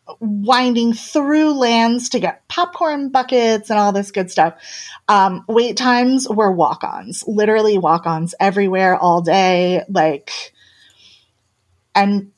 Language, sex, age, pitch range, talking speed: English, female, 30-49, 185-240 Hz, 115 wpm